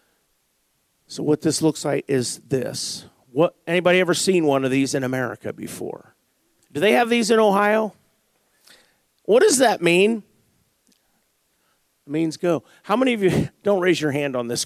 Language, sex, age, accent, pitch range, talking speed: English, male, 50-69, American, 145-195 Hz, 165 wpm